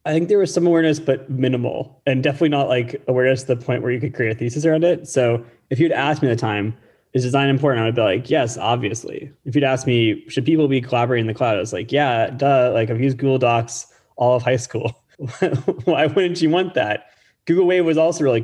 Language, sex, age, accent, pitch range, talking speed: English, male, 20-39, American, 110-140 Hz, 245 wpm